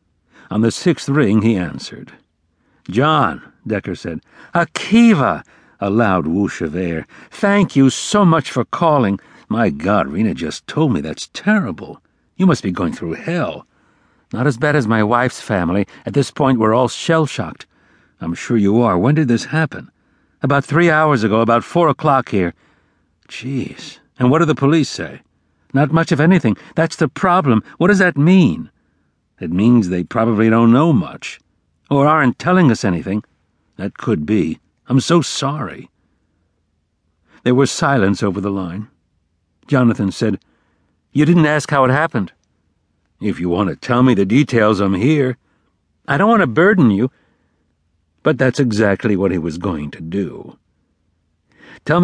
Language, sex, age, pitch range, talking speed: English, male, 60-79, 90-145 Hz, 160 wpm